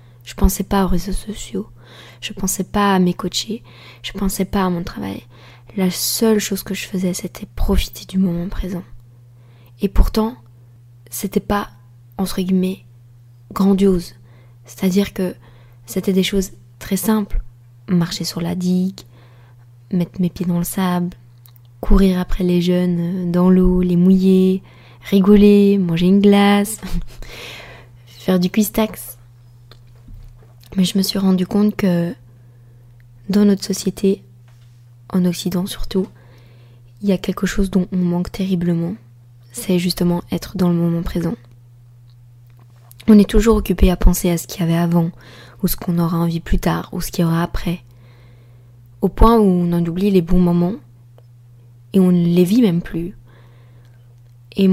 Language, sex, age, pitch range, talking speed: French, female, 20-39, 120-190 Hz, 150 wpm